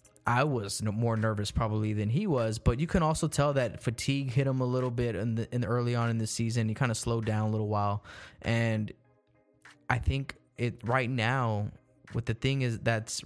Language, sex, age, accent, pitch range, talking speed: English, male, 20-39, American, 110-125 Hz, 215 wpm